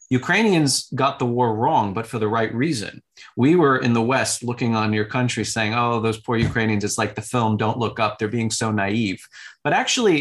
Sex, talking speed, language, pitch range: male, 215 wpm, English, 110-140 Hz